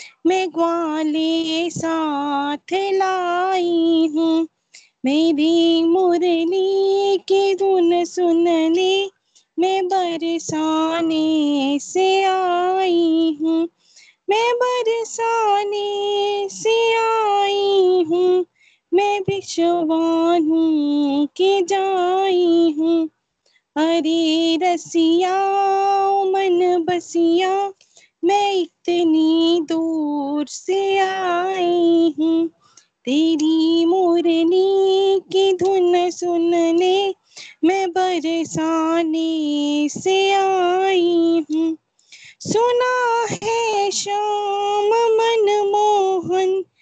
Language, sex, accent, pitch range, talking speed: Hindi, female, native, 330-395 Hz, 65 wpm